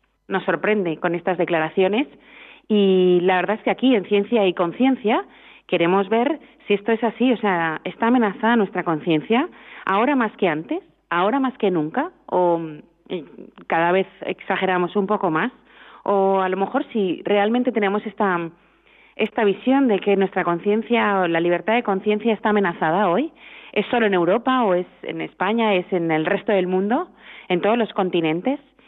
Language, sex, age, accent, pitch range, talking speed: Spanish, female, 30-49, Spanish, 180-225 Hz, 170 wpm